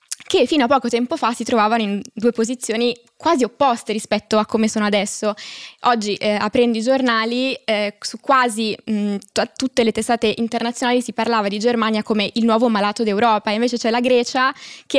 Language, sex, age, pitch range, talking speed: Italian, female, 20-39, 220-250 Hz, 190 wpm